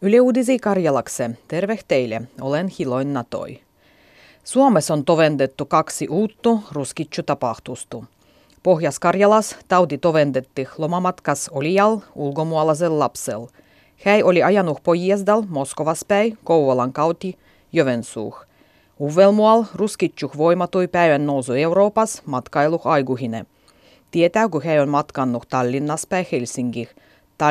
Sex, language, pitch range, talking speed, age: female, Finnish, 140-185 Hz, 100 wpm, 30-49